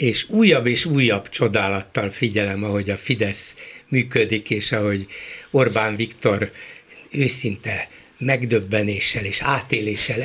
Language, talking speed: Hungarian, 105 wpm